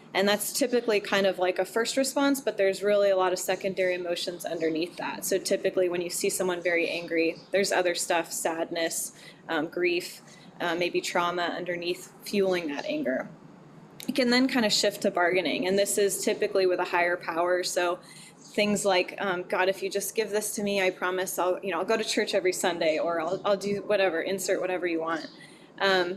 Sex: female